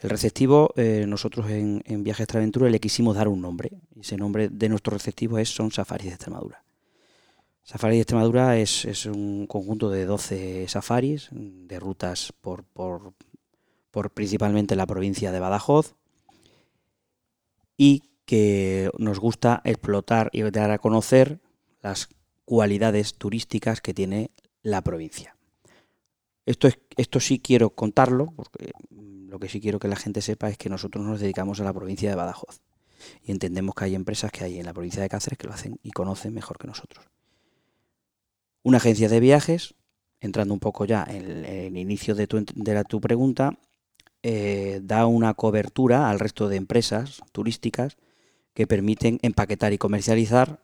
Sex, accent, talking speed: male, Spanish, 160 wpm